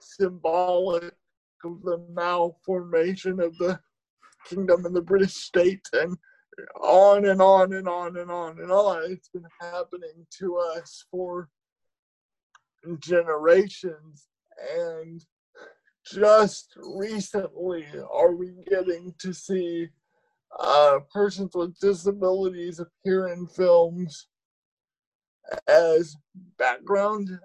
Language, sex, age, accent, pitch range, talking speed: English, male, 50-69, American, 170-195 Hz, 100 wpm